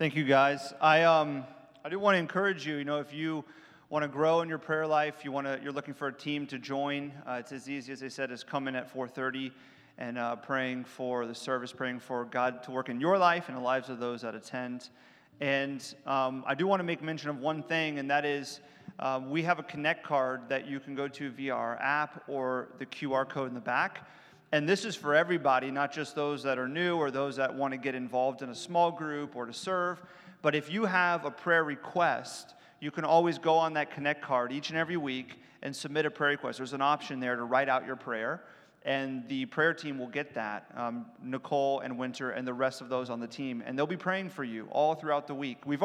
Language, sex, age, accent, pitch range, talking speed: English, male, 30-49, American, 130-155 Hz, 245 wpm